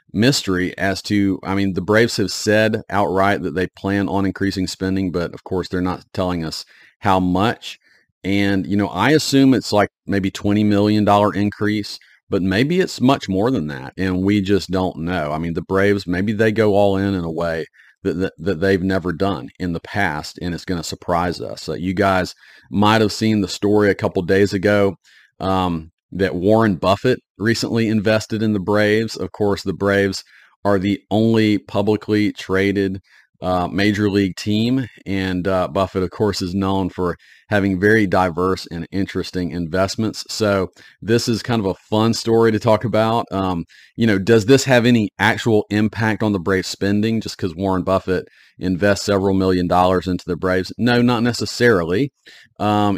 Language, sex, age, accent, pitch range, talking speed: English, male, 40-59, American, 95-105 Hz, 185 wpm